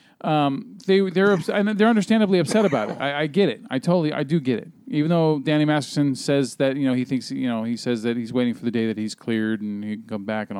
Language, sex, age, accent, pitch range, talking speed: English, male, 40-59, American, 125-170 Hz, 270 wpm